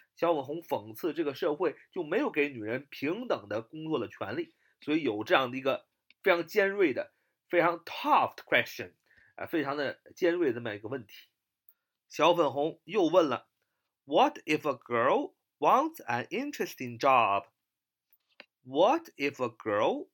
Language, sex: Chinese, male